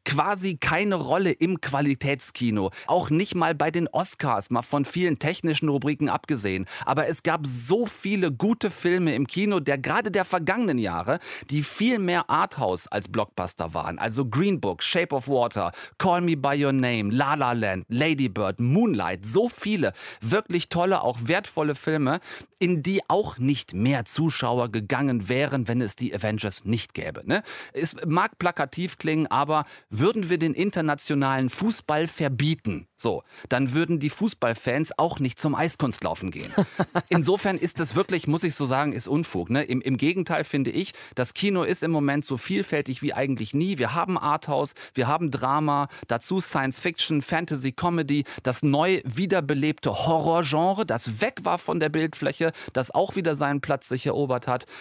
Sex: male